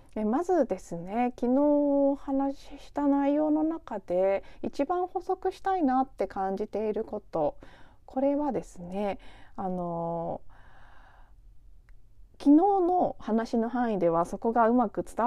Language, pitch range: Japanese, 185-280 Hz